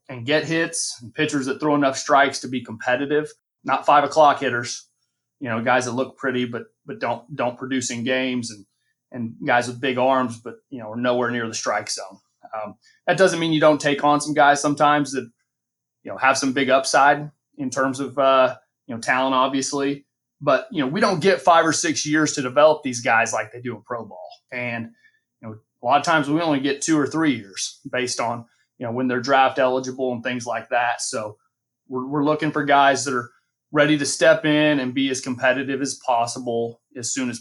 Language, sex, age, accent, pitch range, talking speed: English, male, 30-49, American, 125-150 Hz, 220 wpm